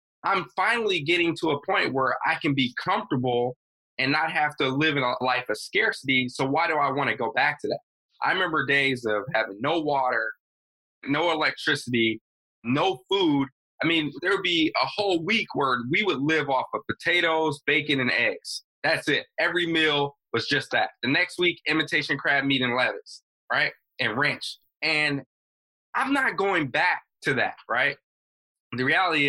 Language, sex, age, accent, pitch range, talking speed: English, male, 20-39, American, 125-155 Hz, 180 wpm